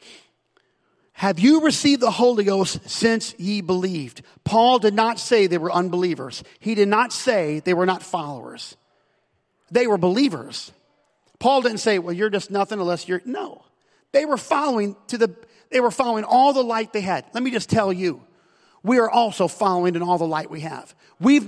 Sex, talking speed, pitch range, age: male, 185 wpm, 170-230 Hz, 40-59